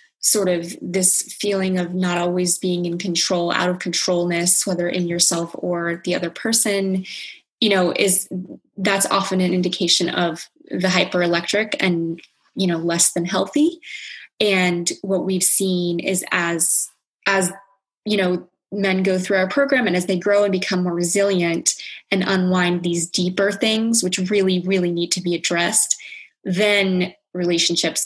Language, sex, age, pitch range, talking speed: English, female, 20-39, 175-205 Hz, 155 wpm